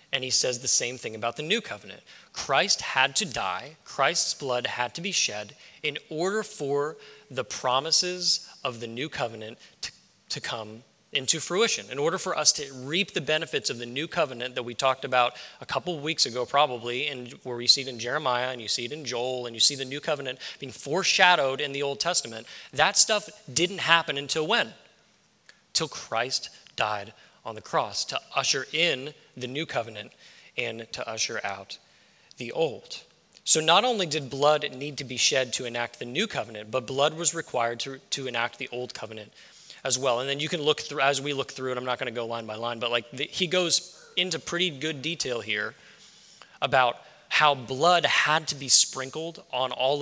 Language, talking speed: English, 200 wpm